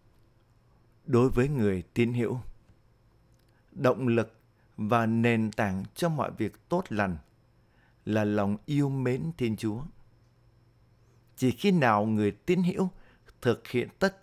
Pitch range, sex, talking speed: 110-125 Hz, male, 125 wpm